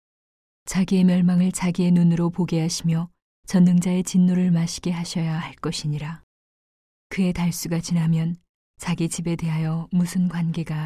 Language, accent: Korean, native